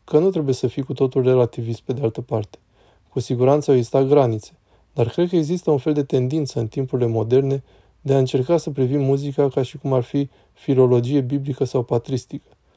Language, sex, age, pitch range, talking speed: Romanian, male, 20-39, 125-145 Hz, 200 wpm